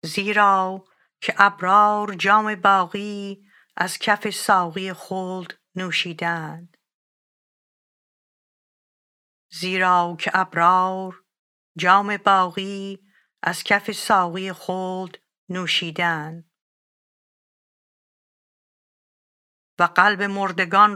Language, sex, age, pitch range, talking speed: English, female, 50-69, 175-195 Hz, 70 wpm